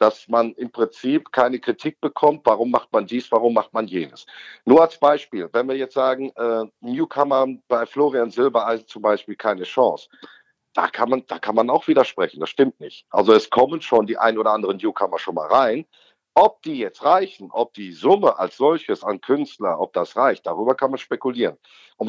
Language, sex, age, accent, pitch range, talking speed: German, male, 50-69, German, 115-150 Hz, 200 wpm